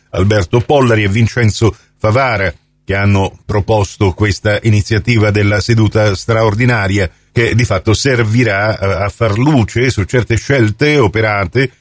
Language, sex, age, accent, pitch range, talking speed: Italian, male, 50-69, native, 105-135 Hz, 120 wpm